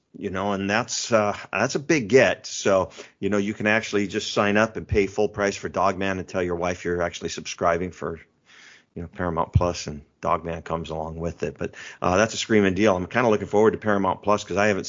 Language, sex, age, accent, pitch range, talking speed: English, male, 40-59, American, 85-100 Hz, 240 wpm